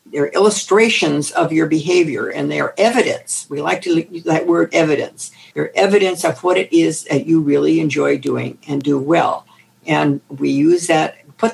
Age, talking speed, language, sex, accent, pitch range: 60-79, 175 wpm, English, female, American, 140-175 Hz